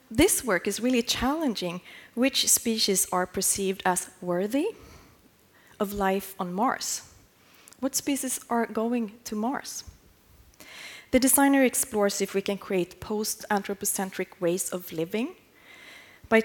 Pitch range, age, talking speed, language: 190-250 Hz, 30-49, 120 wpm, English